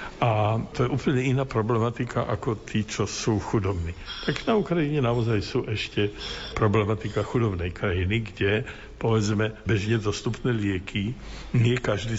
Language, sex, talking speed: Slovak, male, 135 wpm